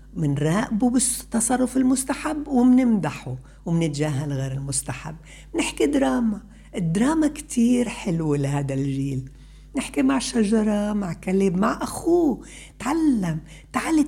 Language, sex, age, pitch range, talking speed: Arabic, female, 60-79, 175-255 Hz, 100 wpm